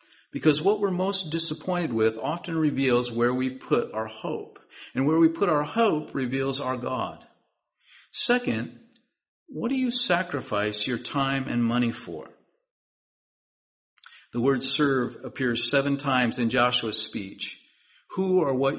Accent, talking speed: American, 145 wpm